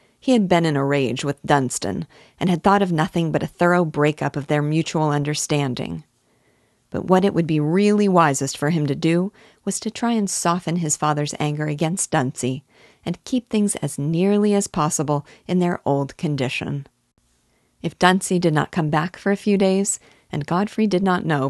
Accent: American